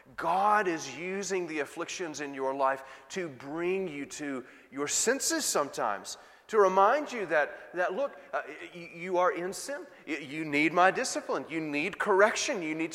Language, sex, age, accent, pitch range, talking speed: English, male, 40-59, American, 155-205 Hz, 165 wpm